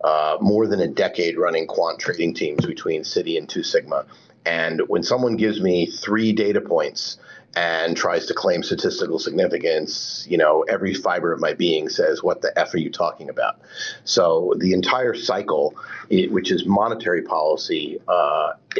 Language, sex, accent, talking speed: English, male, American, 170 wpm